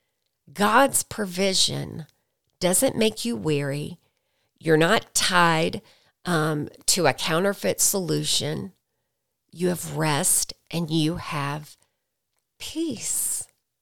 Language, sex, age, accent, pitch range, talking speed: English, female, 40-59, American, 145-190 Hz, 90 wpm